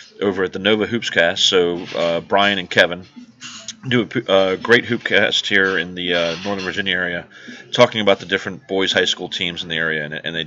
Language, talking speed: English, 220 wpm